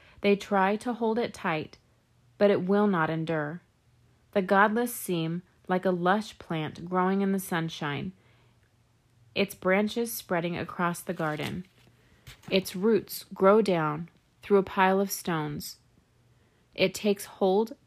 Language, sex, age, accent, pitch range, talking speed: English, female, 30-49, American, 160-205 Hz, 135 wpm